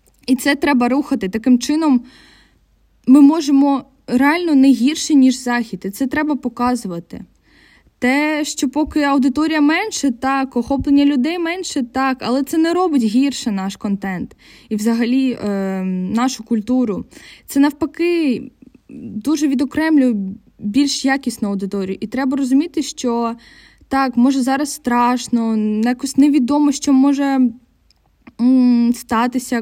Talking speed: 120 wpm